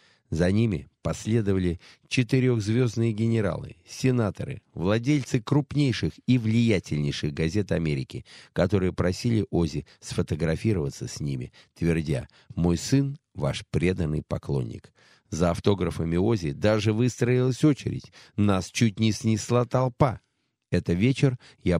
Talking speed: 105 wpm